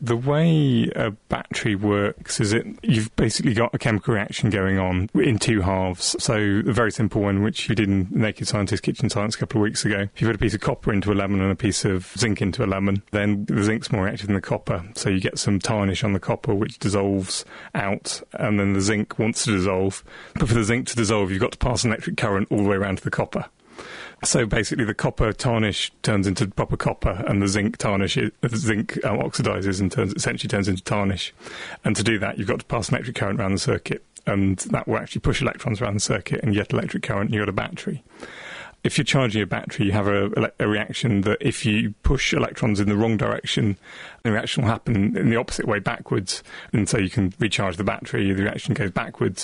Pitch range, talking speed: 100-115 Hz, 235 wpm